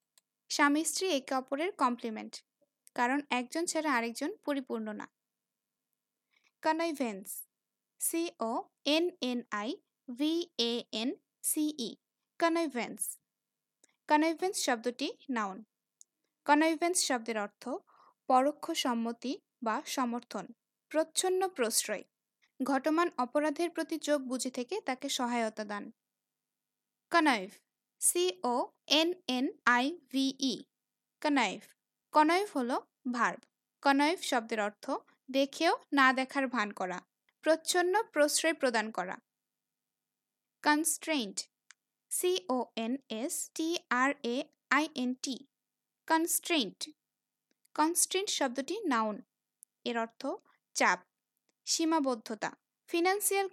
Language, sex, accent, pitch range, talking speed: English, female, Indian, 245-325 Hz, 80 wpm